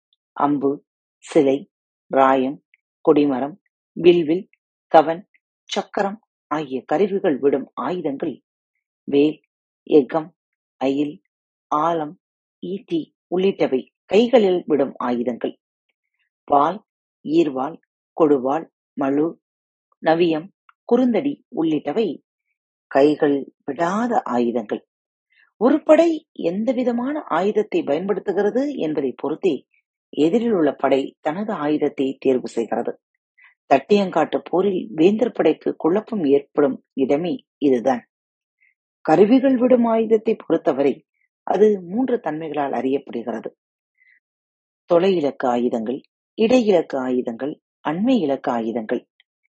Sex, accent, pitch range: female, native, 140-225 Hz